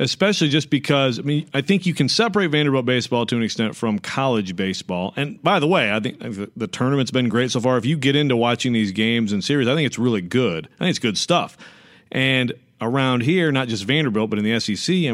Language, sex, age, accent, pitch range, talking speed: English, male, 40-59, American, 110-140 Hz, 240 wpm